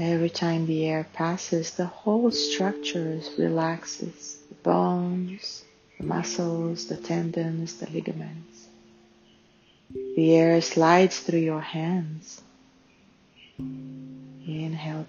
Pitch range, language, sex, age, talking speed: 130-175 Hz, English, female, 40-59, 95 wpm